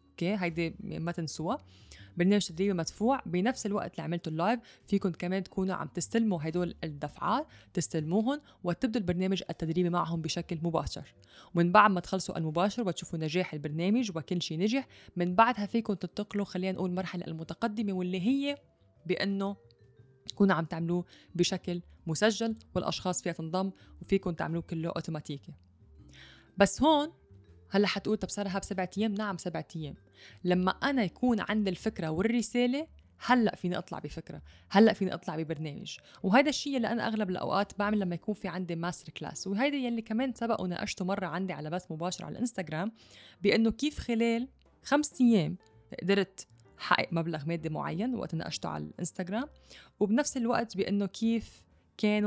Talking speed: 145 wpm